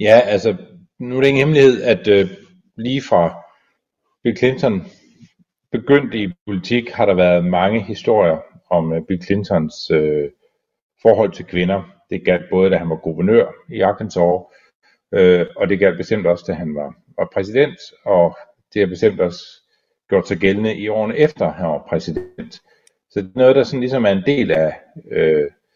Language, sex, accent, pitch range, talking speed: Danish, male, native, 90-130 Hz, 175 wpm